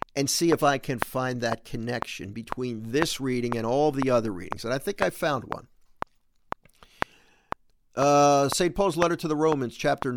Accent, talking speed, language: American, 175 wpm, English